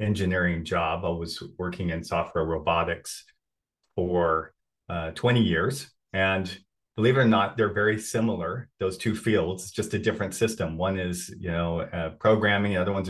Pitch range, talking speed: 95-115 Hz, 165 wpm